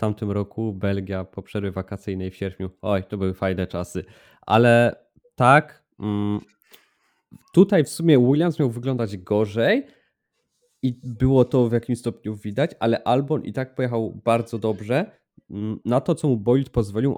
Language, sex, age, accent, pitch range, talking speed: Polish, male, 20-39, native, 110-140 Hz, 145 wpm